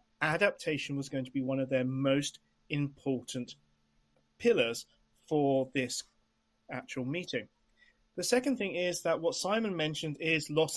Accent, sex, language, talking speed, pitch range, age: British, male, English, 140 wpm, 135-190 Hz, 30-49